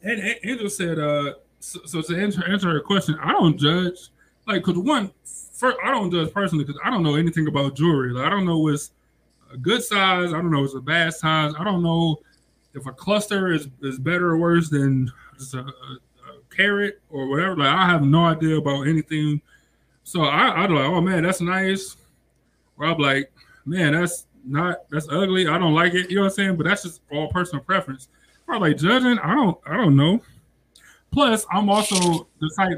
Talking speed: 215 wpm